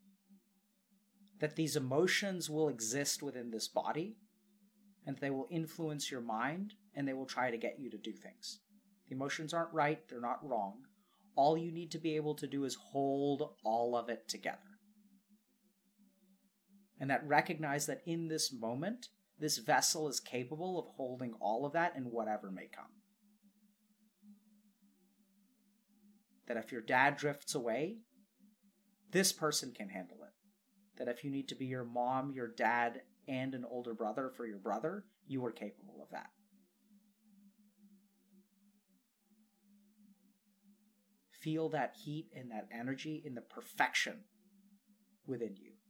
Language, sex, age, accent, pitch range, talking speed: English, male, 30-49, American, 135-205 Hz, 145 wpm